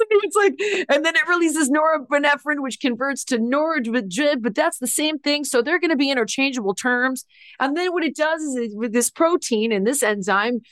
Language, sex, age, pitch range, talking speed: English, female, 30-49, 175-265 Hz, 200 wpm